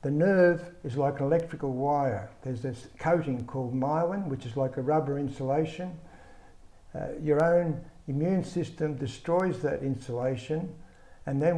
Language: English